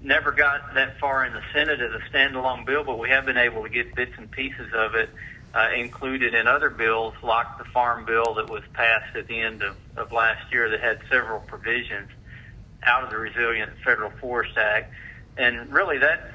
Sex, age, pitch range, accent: male, 50-69, 115-130 Hz, American